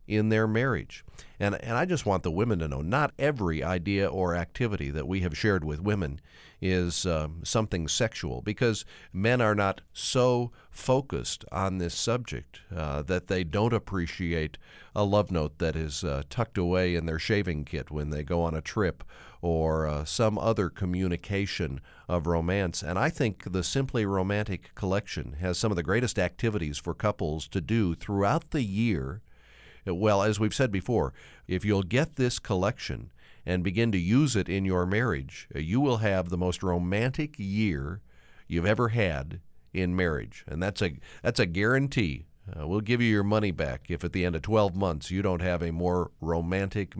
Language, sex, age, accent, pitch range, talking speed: English, male, 50-69, American, 85-110 Hz, 180 wpm